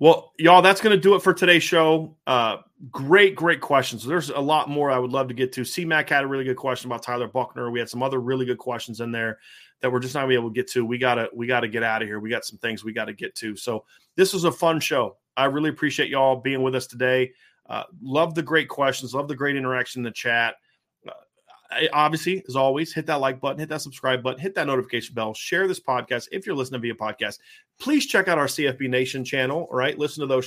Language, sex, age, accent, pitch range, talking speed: English, male, 30-49, American, 120-145 Hz, 255 wpm